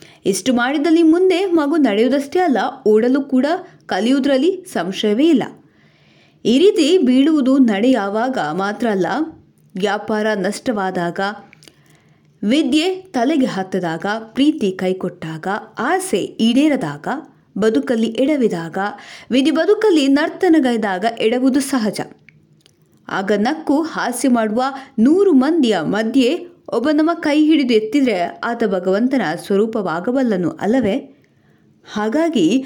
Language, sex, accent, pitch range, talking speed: Kannada, female, native, 200-295 Hz, 90 wpm